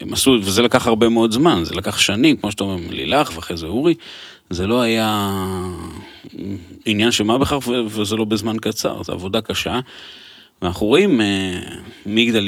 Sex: male